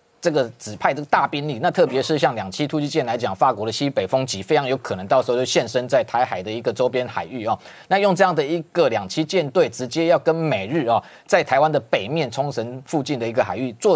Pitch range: 130-170 Hz